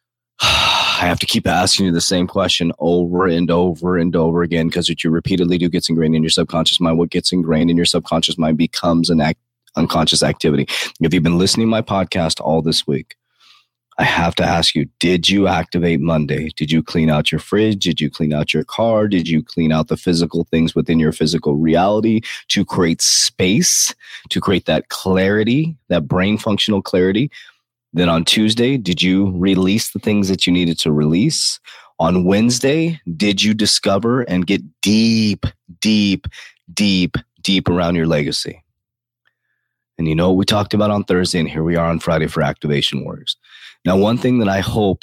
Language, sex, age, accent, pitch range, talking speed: English, male, 20-39, American, 80-100 Hz, 190 wpm